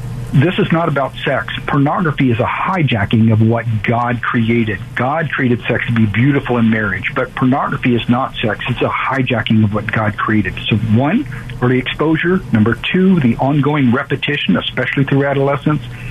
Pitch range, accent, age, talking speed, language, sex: 120-145 Hz, American, 50-69, 170 wpm, English, male